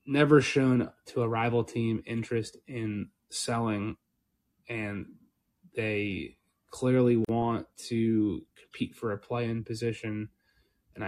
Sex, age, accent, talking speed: male, 20-39, American, 110 wpm